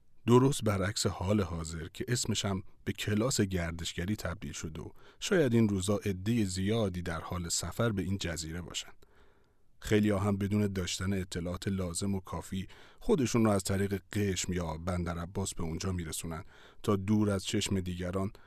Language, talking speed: Persian, 155 wpm